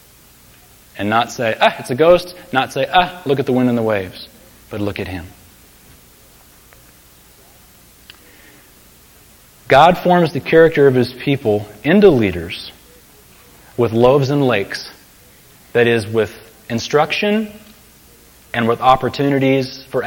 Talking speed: 125 wpm